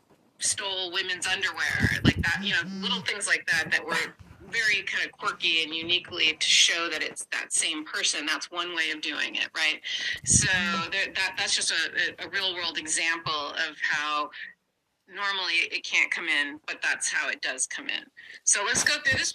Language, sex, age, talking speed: English, female, 30-49, 190 wpm